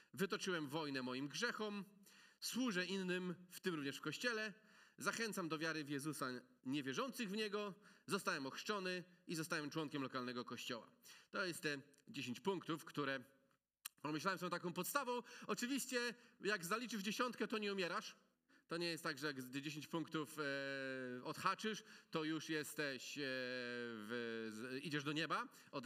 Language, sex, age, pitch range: Polish, male, 40-59, 150-225 Hz